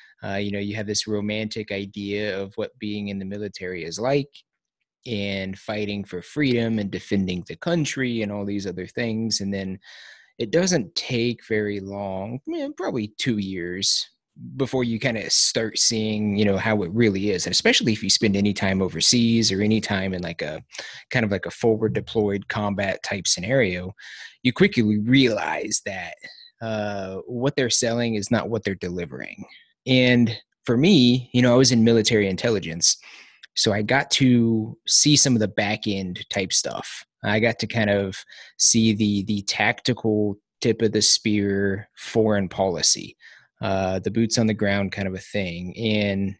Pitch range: 100-115 Hz